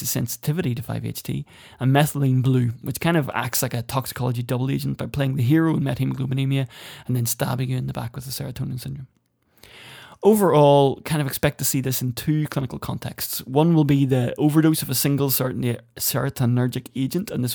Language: English